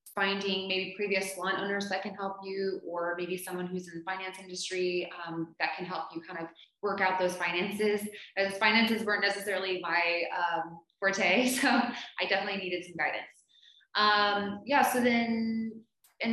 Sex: female